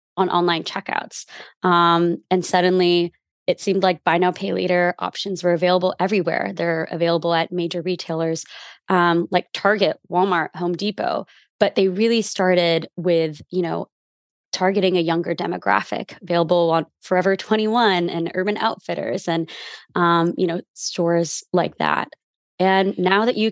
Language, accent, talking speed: English, American, 150 wpm